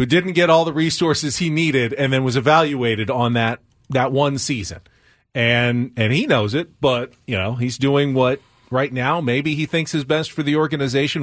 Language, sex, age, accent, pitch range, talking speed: English, male, 40-59, American, 115-155 Hz, 205 wpm